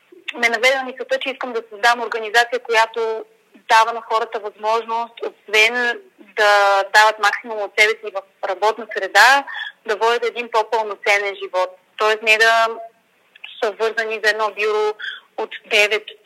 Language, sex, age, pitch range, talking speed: Bulgarian, female, 30-49, 205-245 Hz, 135 wpm